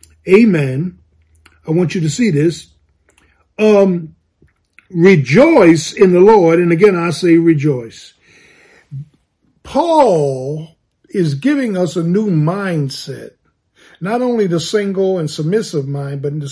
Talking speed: 125 wpm